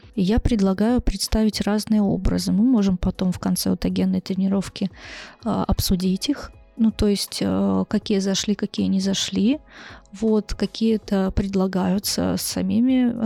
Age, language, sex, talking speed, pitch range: 20-39, Russian, female, 135 wpm, 200-225 Hz